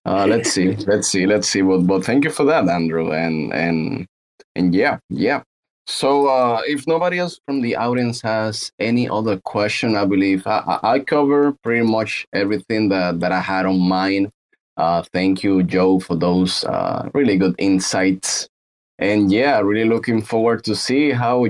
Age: 30-49